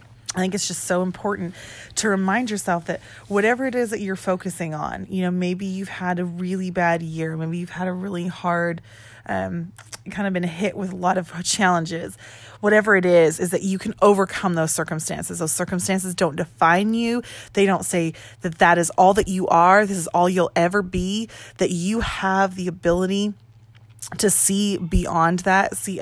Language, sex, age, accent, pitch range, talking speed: English, female, 20-39, American, 165-190 Hz, 190 wpm